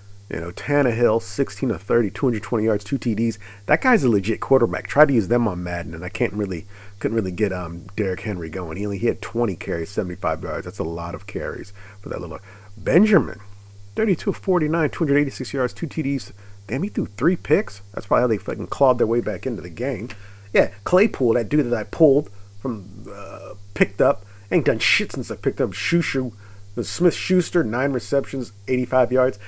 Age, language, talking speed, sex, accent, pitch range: 40-59, English, 195 wpm, male, American, 100-130 Hz